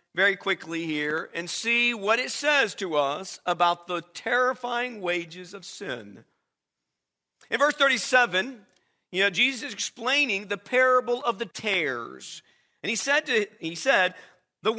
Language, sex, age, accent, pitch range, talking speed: English, male, 50-69, American, 185-260 Hz, 145 wpm